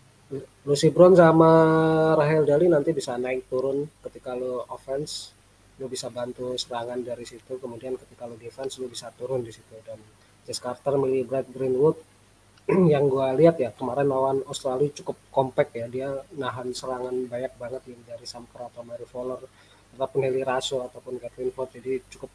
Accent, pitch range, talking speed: native, 120-140 Hz, 165 wpm